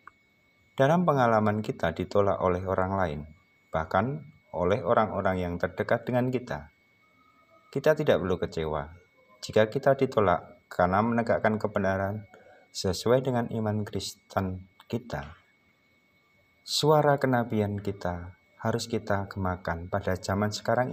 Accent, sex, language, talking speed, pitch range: native, male, Indonesian, 110 wpm, 90-120 Hz